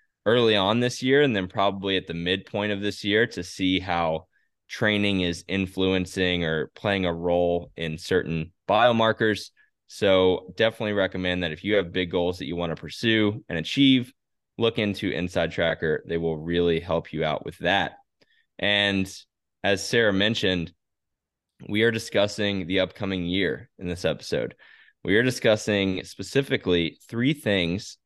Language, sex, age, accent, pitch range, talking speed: English, male, 10-29, American, 90-110 Hz, 155 wpm